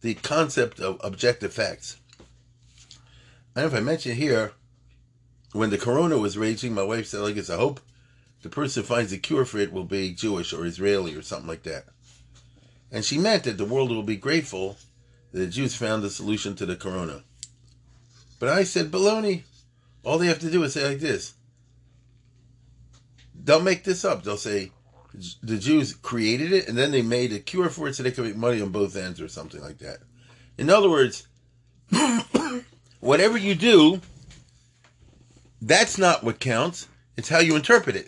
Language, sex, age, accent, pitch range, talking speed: English, male, 40-59, American, 105-130 Hz, 180 wpm